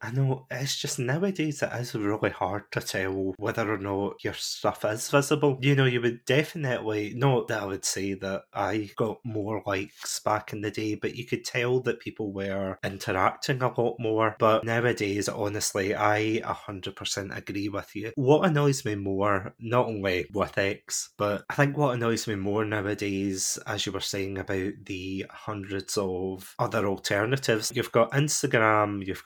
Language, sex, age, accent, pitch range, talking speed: English, male, 20-39, British, 100-120 Hz, 175 wpm